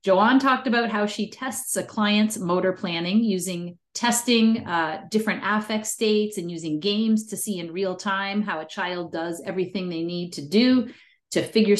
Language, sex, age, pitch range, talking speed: English, female, 30-49, 170-220 Hz, 180 wpm